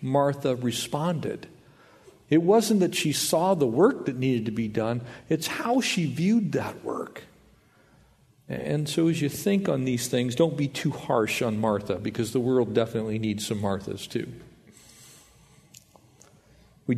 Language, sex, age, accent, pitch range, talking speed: English, male, 50-69, American, 115-140 Hz, 150 wpm